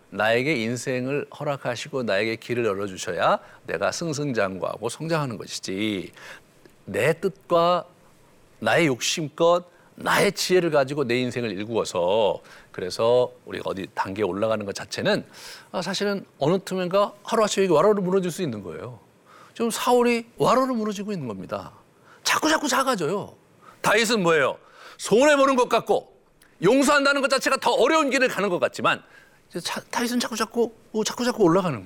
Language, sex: Korean, male